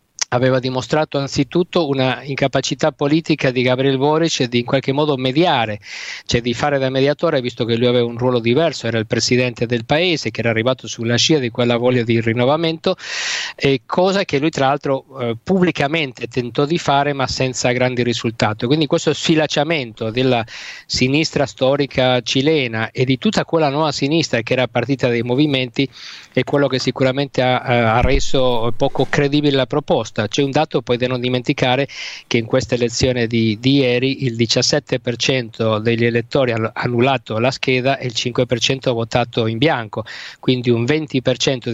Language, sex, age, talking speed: Italian, male, 50-69, 170 wpm